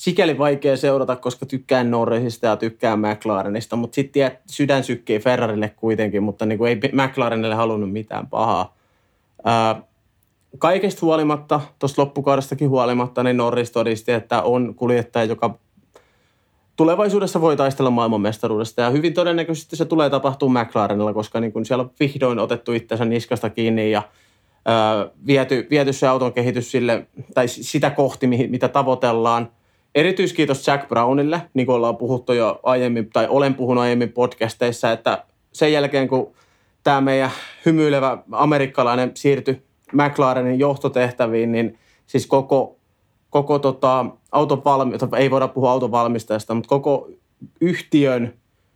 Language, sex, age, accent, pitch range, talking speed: Finnish, male, 30-49, native, 115-140 Hz, 130 wpm